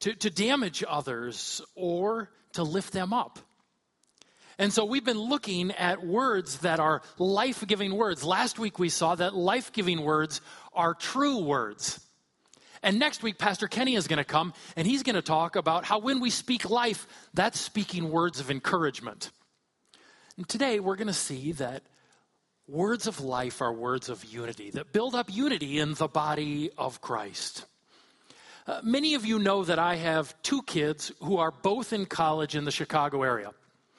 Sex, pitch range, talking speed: male, 160-225 Hz, 170 wpm